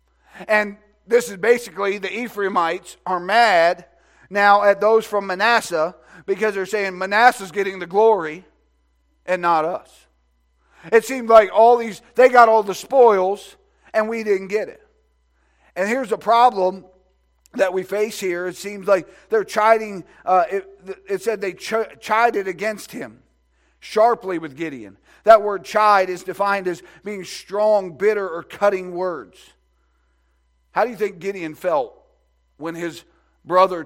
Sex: male